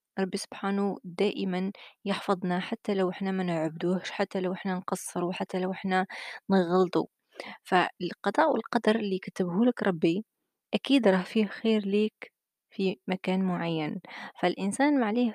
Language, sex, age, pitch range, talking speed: Arabic, female, 20-39, 185-220 Hz, 125 wpm